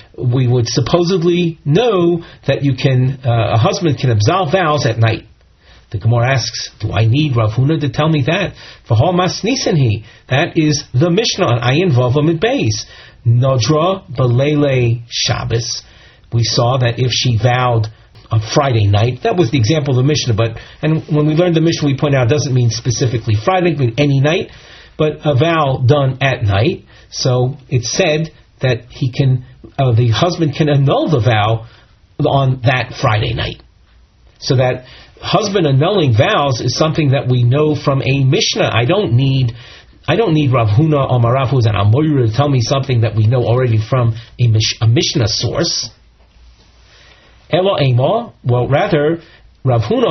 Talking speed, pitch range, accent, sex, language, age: 175 wpm, 115-150 Hz, American, male, English, 40-59